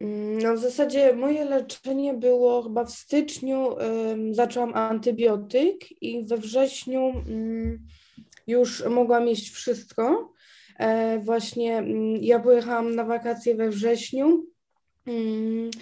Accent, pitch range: native, 220-250 Hz